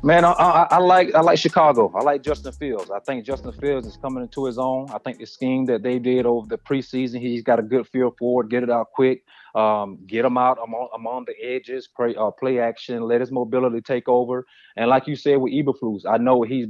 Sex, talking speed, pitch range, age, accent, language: male, 245 wpm, 115-135 Hz, 30-49, American, English